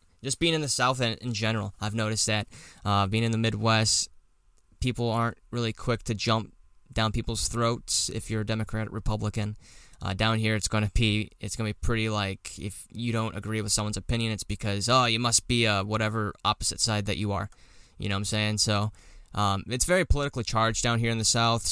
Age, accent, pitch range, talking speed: 10-29, American, 100-115 Hz, 215 wpm